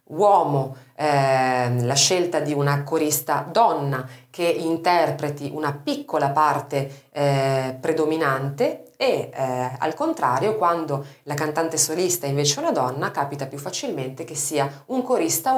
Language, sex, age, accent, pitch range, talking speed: Italian, female, 30-49, native, 145-210 Hz, 125 wpm